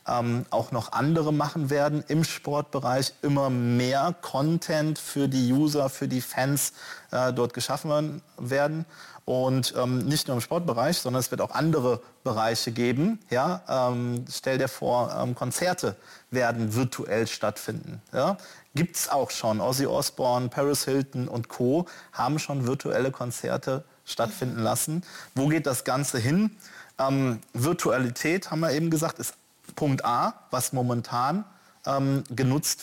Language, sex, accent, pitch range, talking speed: German, male, German, 125-150 Hz, 145 wpm